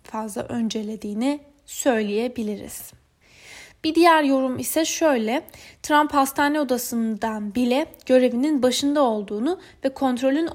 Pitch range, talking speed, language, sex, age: 225-285 Hz, 95 wpm, Turkish, female, 10-29